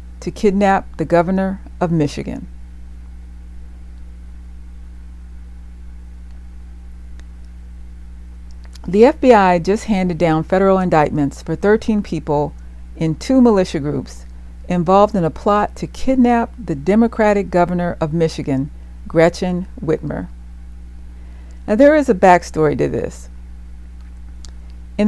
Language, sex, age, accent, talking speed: English, female, 50-69, American, 100 wpm